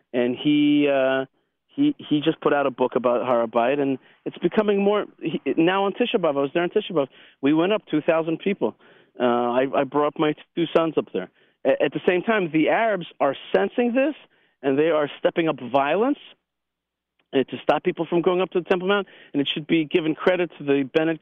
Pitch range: 130-170 Hz